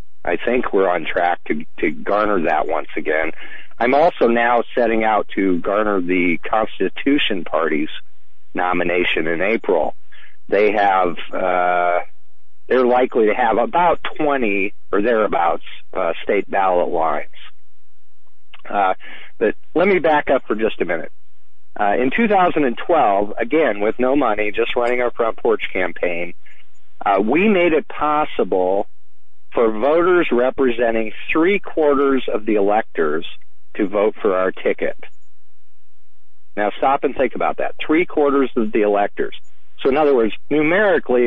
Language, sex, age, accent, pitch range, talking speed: English, male, 50-69, American, 90-125 Hz, 135 wpm